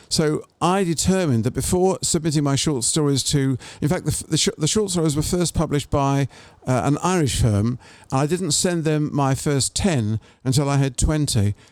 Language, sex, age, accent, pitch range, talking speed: English, male, 50-69, British, 120-150 Hz, 195 wpm